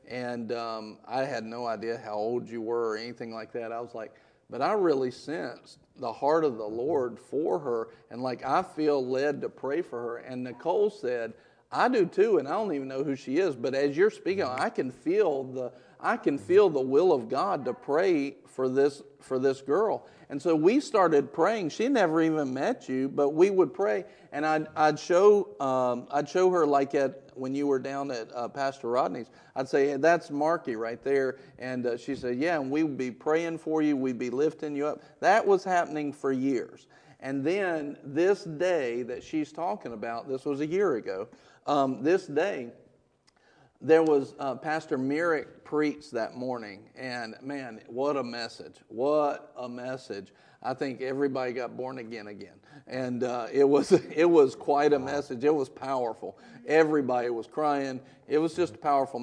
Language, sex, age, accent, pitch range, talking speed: English, male, 40-59, American, 125-150 Hz, 195 wpm